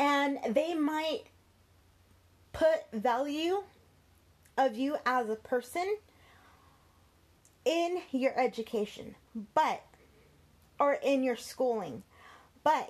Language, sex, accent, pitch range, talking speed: English, female, American, 200-270 Hz, 90 wpm